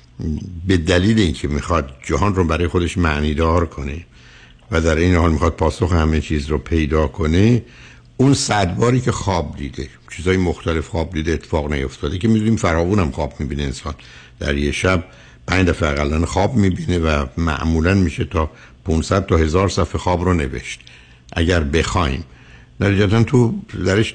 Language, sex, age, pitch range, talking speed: Persian, male, 60-79, 75-100 Hz, 160 wpm